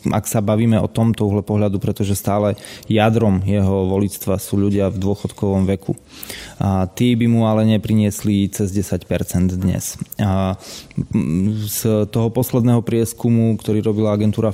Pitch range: 100-115 Hz